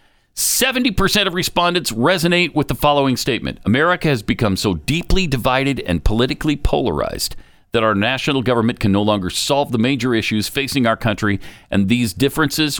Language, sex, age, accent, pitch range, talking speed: English, male, 50-69, American, 105-150 Hz, 155 wpm